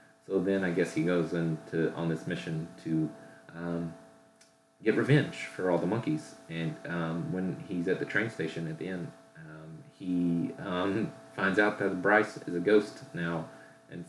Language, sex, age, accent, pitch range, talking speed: English, male, 30-49, American, 85-110 Hz, 175 wpm